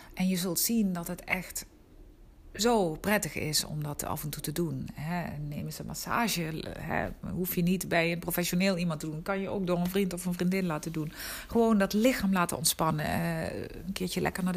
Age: 40-59